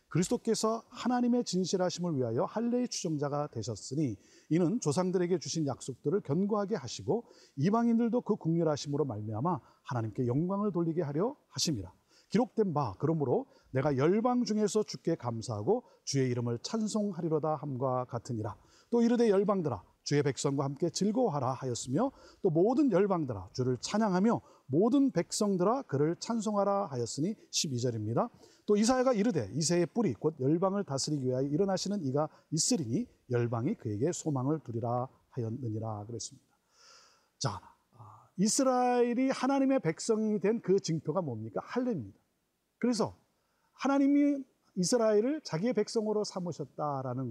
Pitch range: 135-220 Hz